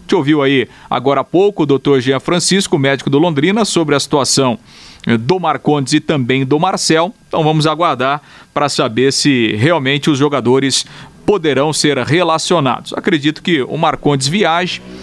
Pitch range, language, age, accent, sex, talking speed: 130-155 Hz, Portuguese, 40-59, Brazilian, male, 155 wpm